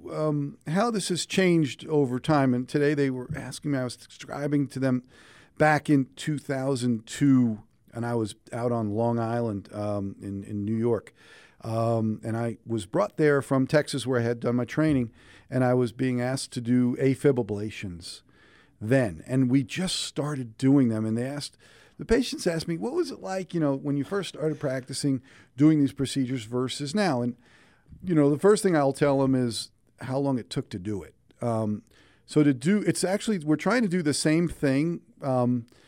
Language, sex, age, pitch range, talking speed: English, male, 40-59, 120-155 Hz, 195 wpm